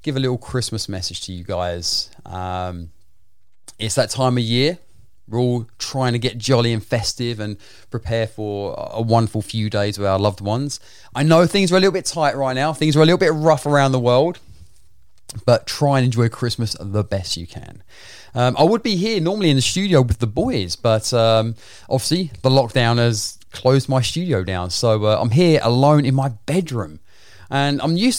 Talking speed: 200 wpm